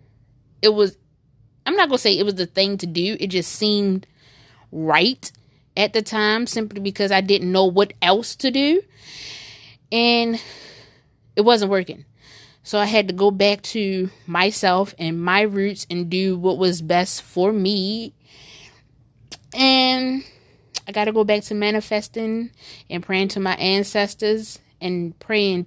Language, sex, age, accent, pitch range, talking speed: English, female, 20-39, American, 165-215 Hz, 155 wpm